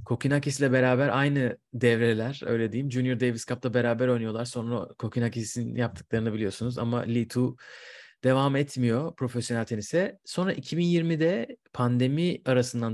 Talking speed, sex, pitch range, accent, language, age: 125 wpm, male, 115-140 Hz, native, Turkish, 30-49